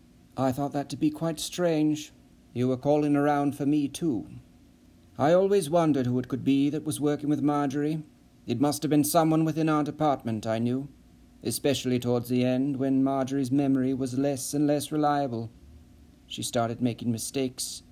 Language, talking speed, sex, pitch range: English, 175 wpm, male, 130-155 Hz